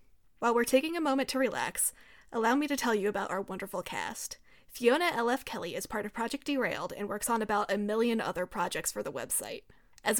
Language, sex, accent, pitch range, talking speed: English, female, American, 210-255 Hz, 210 wpm